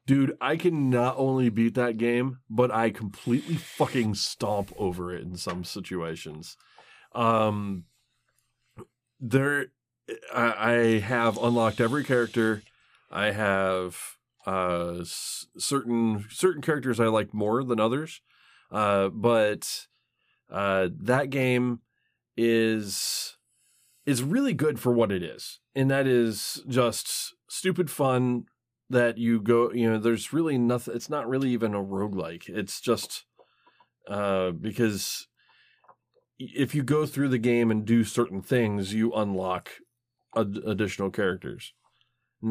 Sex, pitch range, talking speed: male, 100-125 Hz, 130 wpm